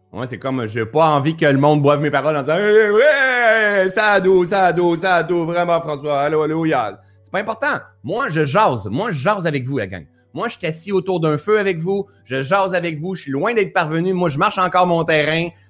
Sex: male